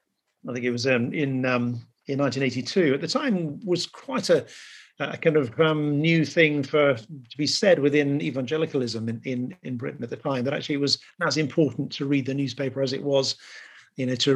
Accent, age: British, 50-69